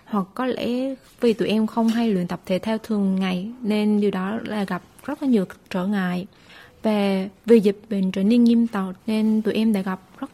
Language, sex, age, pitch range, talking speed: Vietnamese, female, 20-39, 190-235 Hz, 220 wpm